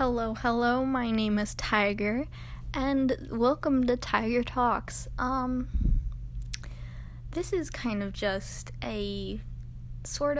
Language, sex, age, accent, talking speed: English, female, 10-29, American, 110 wpm